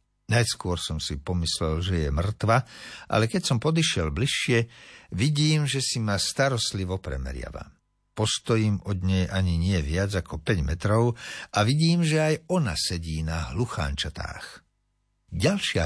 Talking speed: 135 wpm